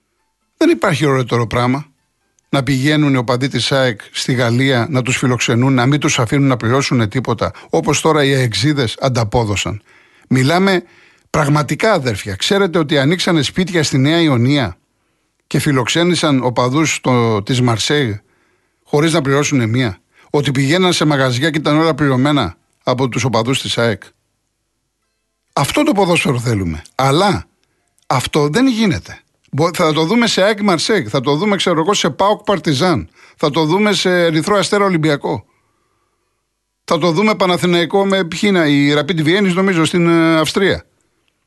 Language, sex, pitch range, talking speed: Greek, male, 125-175 Hz, 140 wpm